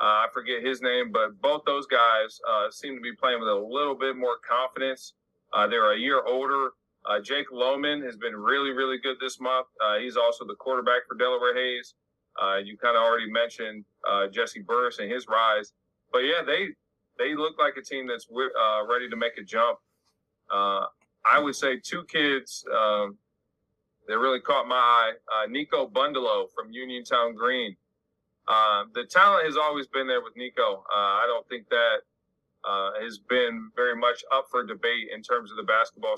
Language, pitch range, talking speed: English, 110-135 Hz, 190 wpm